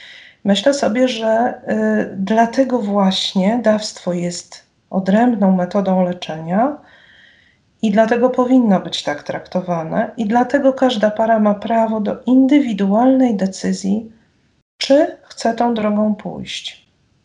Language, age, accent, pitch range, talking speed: Polish, 40-59, native, 205-250 Hz, 105 wpm